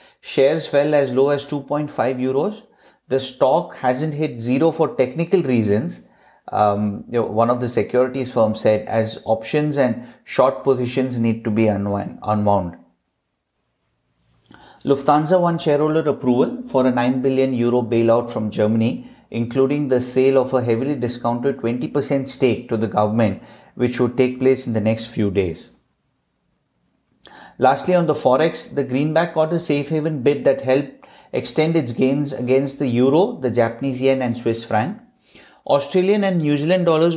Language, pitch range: English, 120-145 Hz